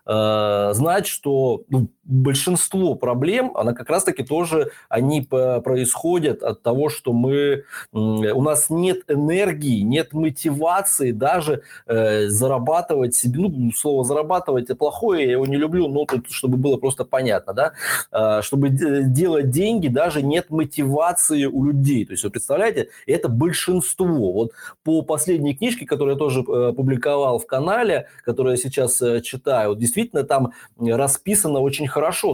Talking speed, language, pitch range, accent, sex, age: 135 wpm, Russian, 130-170 Hz, native, male, 20-39